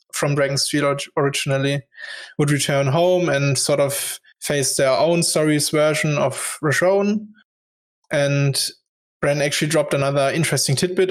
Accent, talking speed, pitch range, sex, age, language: German, 130 wpm, 140-170 Hz, male, 20-39, English